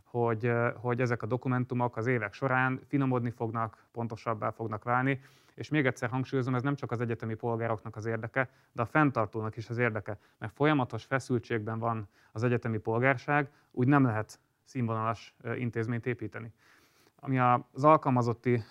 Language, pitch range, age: Hungarian, 115-130 Hz, 30-49